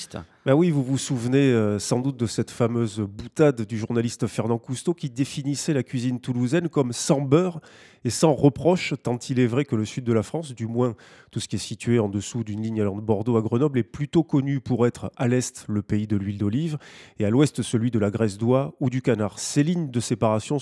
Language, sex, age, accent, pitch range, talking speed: French, male, 20-39, French, 115-145 Hz, 235 wpm